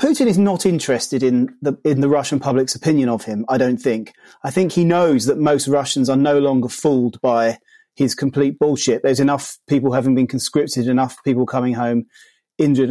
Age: 30-49